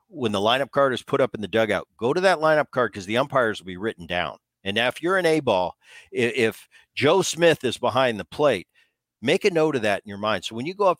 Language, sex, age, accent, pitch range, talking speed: English, male, 50-69, American, 110-150 Hz, 260 wpm